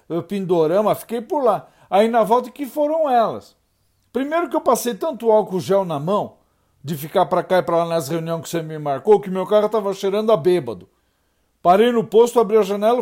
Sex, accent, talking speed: male, Brazilian, 210 wpm